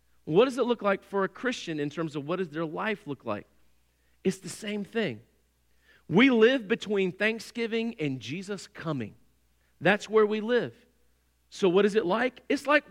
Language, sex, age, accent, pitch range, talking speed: English, male, 40-59, American, 180-290 Hz, 180 wpm